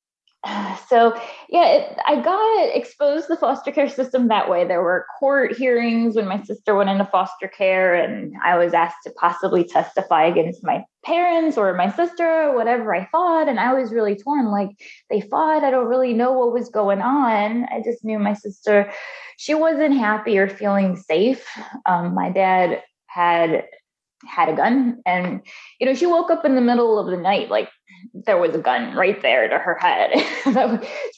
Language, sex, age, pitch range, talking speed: English, female, 20-39, 190-270 Hz, 185 wpm